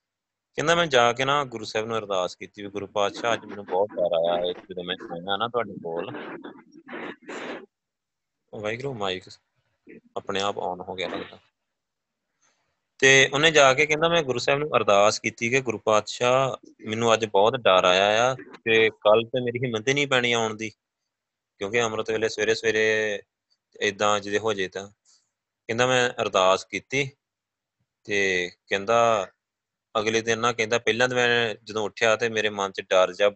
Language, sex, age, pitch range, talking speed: Punjabi, male, 20-39, 100-125 Hz, 160 wpm